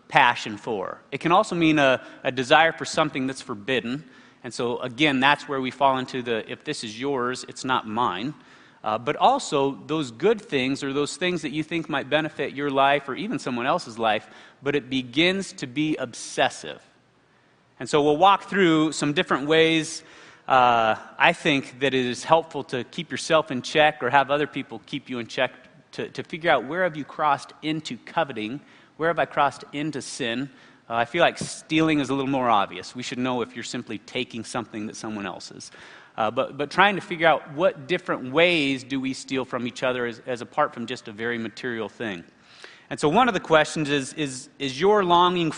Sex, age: male, 30-49